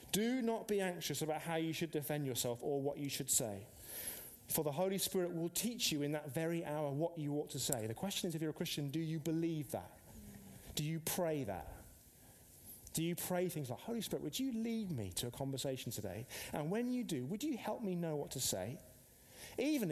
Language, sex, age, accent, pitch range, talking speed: English, male, 30-49, British, 125-175 Hz, 225 wpm